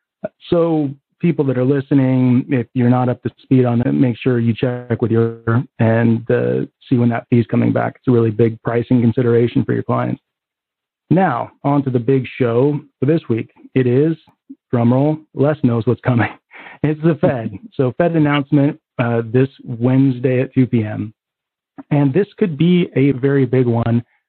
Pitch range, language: 120-140 Hz, English